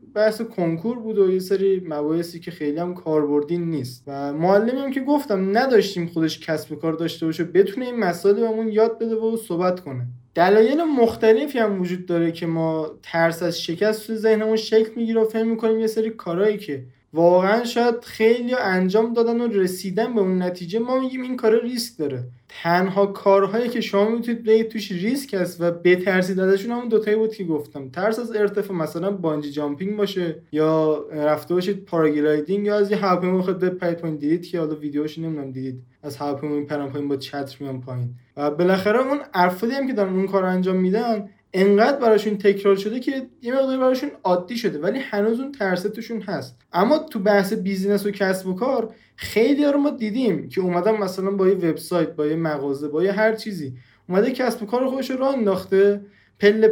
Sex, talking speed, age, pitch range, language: male, 185 wpm, 20-39, 165-225 Hz, Persian